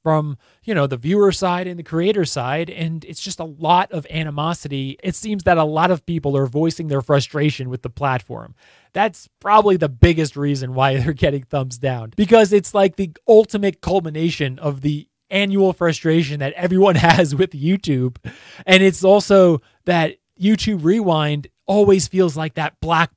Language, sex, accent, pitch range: English, male, American, 140-175 Hz